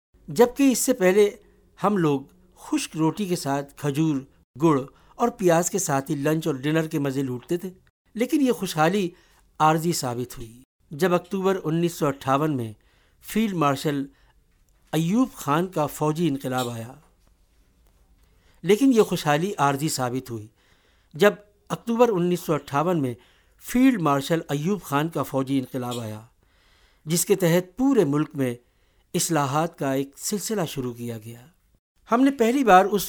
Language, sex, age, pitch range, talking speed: Urdu, male, 60-79, 135-185 Hz, 145 wpm